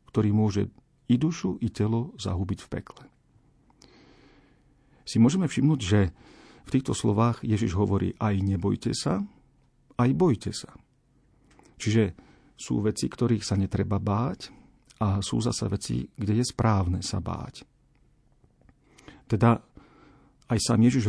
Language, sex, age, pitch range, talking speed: Slovak, male, 50-69, 100-120 Hz, 125 wpm